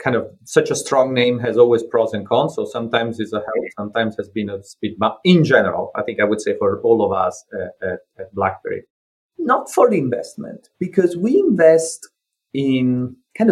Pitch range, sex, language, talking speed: 110-180 Hz, male, English, 205 wpm